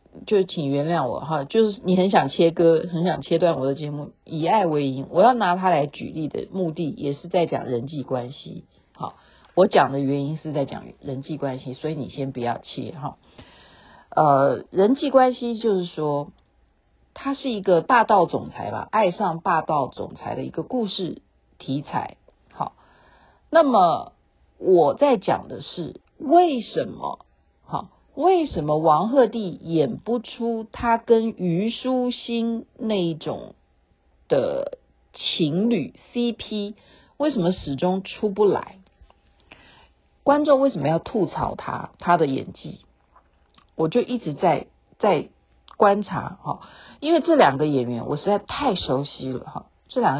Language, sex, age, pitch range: Chinese, female, 50-69, 150-230 Hz